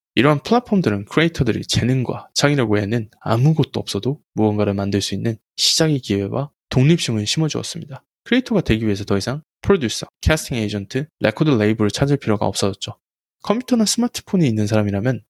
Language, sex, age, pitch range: Korean, male, 20-39, 105-155 Hz